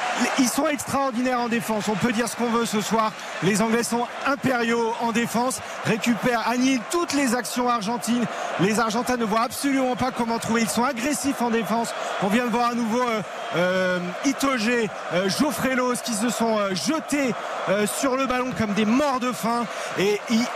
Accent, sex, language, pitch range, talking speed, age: French, male, French, 190-245 Hz, 195 wpm, 40-59